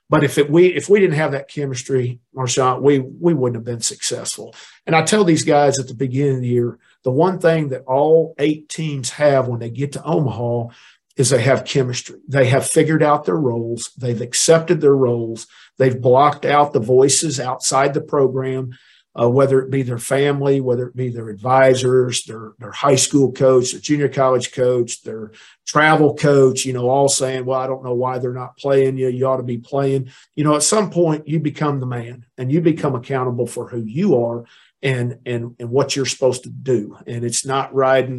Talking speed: 210 wpm